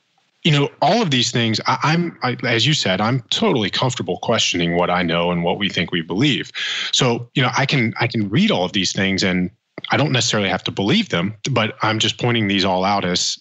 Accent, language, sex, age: American, English, male, 20-39